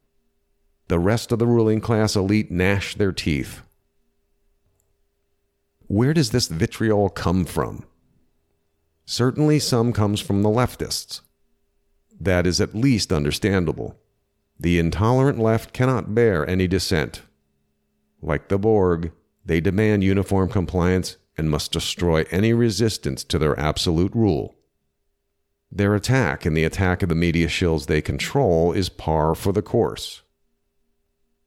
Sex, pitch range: male, 80-105 Hz